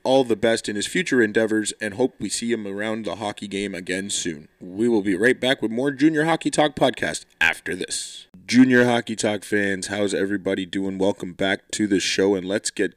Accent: American